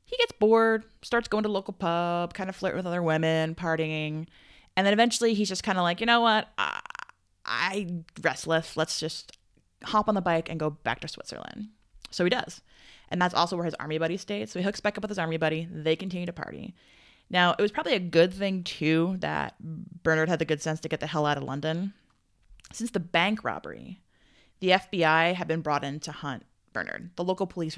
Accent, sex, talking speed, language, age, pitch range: American, female, 215 wpm, English, 20-39, 155-190 Hz